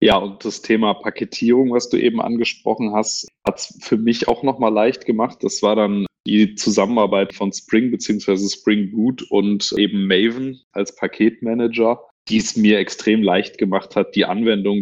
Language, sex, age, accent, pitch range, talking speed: German, male, 20-39, German, 100-115 Hz, 170 wpm